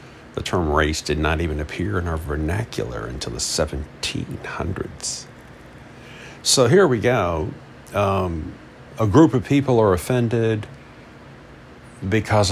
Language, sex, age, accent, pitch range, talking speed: English, male, 50-69, American, 80-110 Hz, 120 wpm